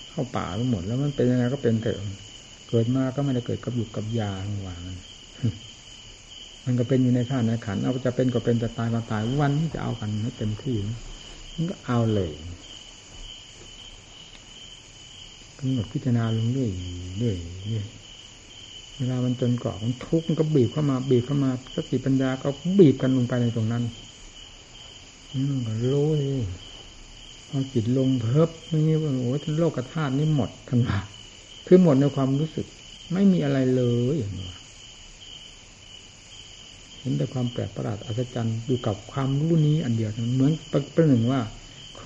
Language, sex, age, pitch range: Thai, male, 60-79, 110-135 Hz